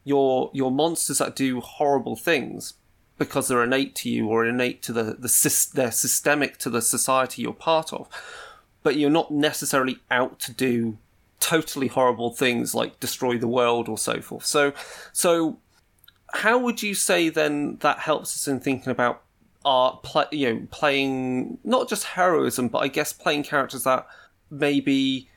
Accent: British